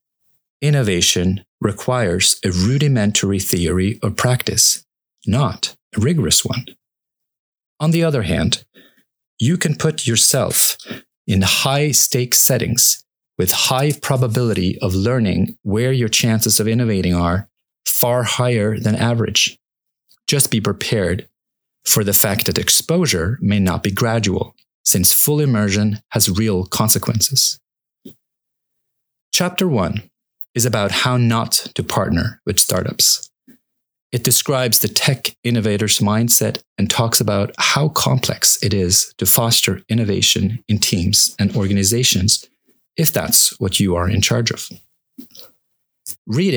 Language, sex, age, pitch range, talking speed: English, male, 30-49, 100-125 Hz, 120 wpm